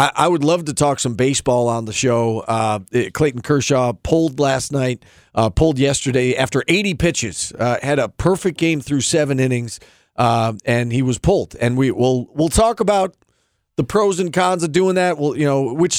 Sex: male